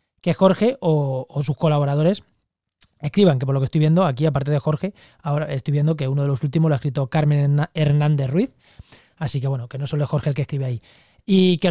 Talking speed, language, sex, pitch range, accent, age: 230 wpm, Spanish, male, 140-170 Hz, Spanish, 20-39